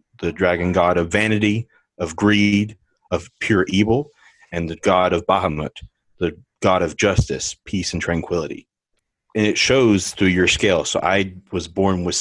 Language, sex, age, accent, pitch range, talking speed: English, male, 30-49, American, 85-100 Hz, 160 wpm